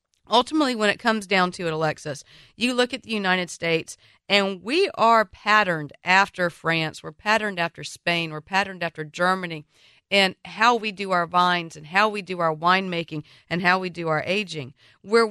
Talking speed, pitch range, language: 185 wpm, 160-210 Hz, English